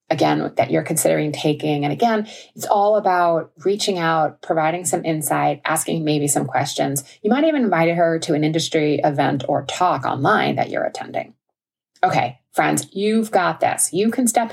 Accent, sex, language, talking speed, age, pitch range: American, female, English, 175 wpm, 30-49, 155-210 Hz